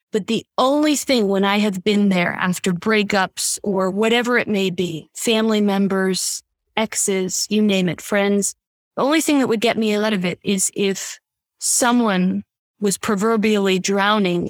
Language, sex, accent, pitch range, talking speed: English, female, American, 195-235 Hz, 165 wpm